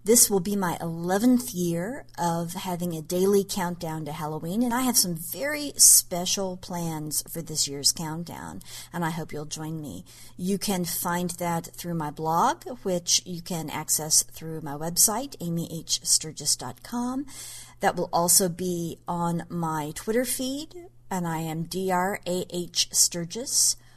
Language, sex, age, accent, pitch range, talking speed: English, female, 40-59, American, 155-210 Hz, 145 wpm